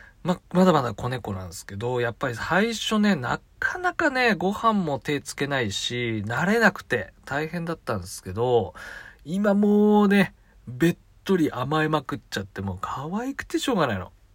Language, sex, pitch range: Japanese, male, 115-180 Hz